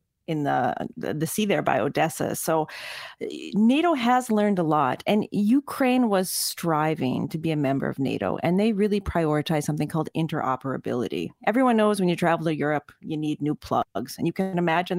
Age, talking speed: 40-59, 180 wpm